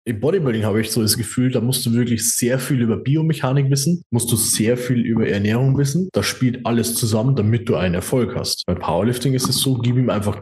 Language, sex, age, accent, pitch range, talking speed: German, male, 20-39, German, 110-135 Hz, 230 wpm